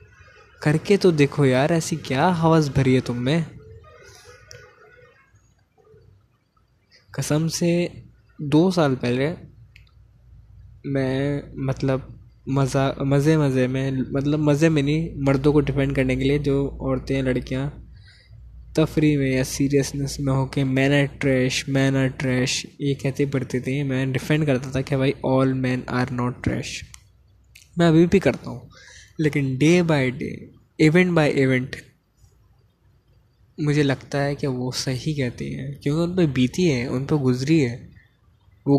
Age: 20-39